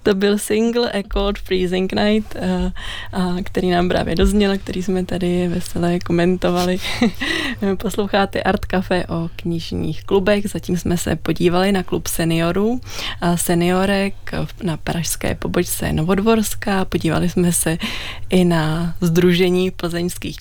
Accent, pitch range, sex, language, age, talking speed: native, 170-195 Hz, female, Czech, 20-39, 125 wpm